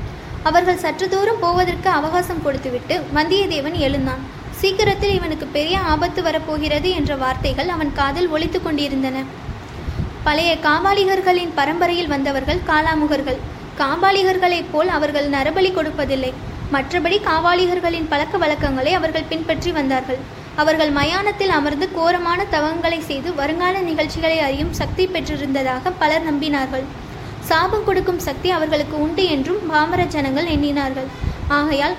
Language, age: Tamil, 20-39